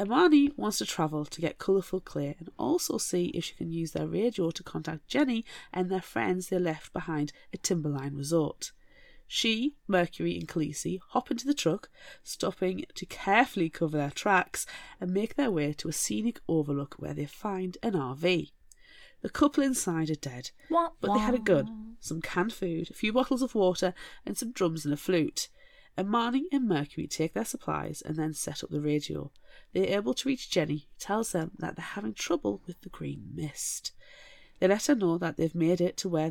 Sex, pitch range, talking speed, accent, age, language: female, 160-225 Hz, 195 wpm, British, 30-49, English